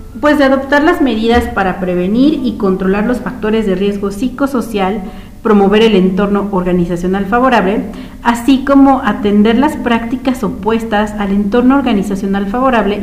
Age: 40-59